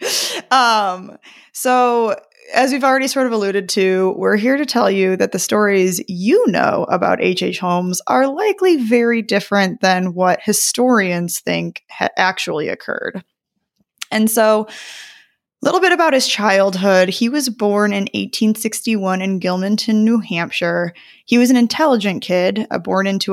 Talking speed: 145 wpm